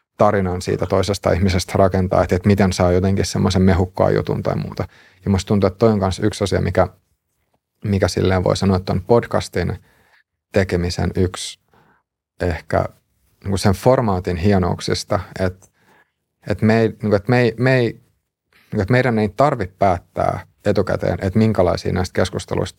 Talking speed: 140 wpm